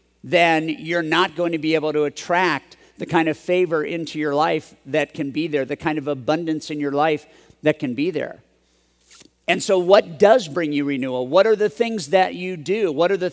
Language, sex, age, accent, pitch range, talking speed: English, male, 50-69, American, 135-170 Hz, 215 wpm